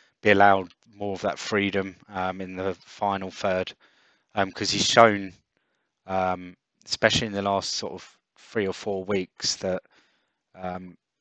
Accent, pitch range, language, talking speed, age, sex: British, 95-105 Hz, English, 150 wpm, 20-39, male